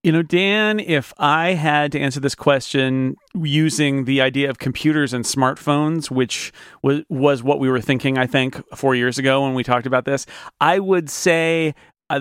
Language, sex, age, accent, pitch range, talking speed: English, male, 40-59, American, 125-155 Hz, 185 wpm